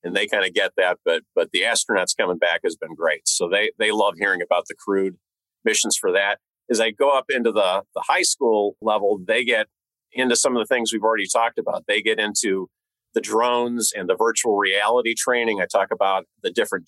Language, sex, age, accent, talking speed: English, male, 40-59, American, 220 wpm